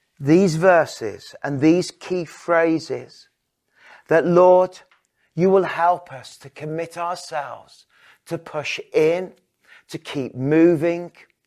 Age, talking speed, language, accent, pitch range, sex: 40-59, 110 wpm, English, British, 125-165 Hz, male